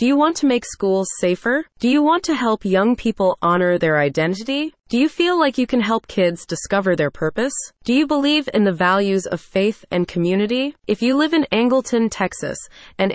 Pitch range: 170-235 Hz